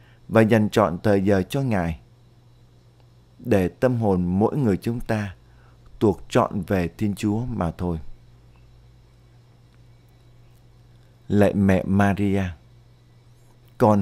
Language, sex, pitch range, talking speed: Vietnamese, male, 100-120 Hz, 105 wpm